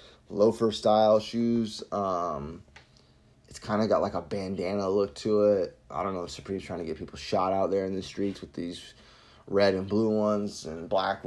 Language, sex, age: English, male, 20-39